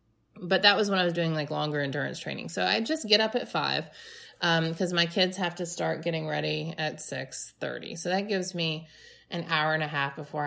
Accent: American